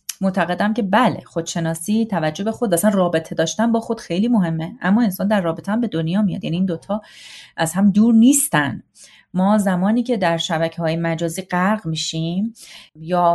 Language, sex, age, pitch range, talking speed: Persian, female, 30-49, 170-230 Hz, 170 wpm